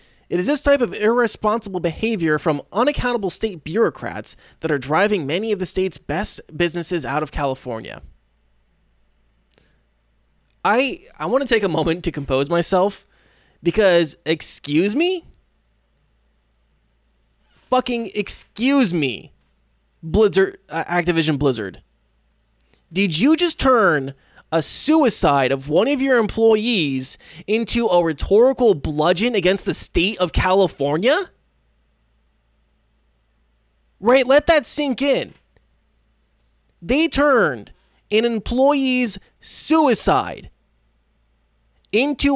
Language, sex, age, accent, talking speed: English, male, 20-39, American, 105 wpm